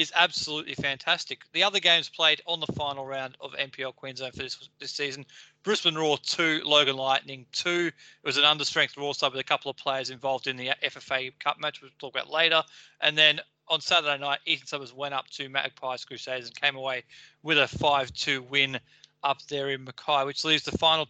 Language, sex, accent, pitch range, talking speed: English, male, Australian, 135-160 Hz, 210 wpm